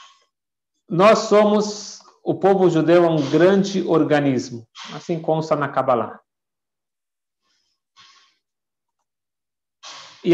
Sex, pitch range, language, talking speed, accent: male, 145-195 Hz, Portuguese, 80 wpm, Brazilian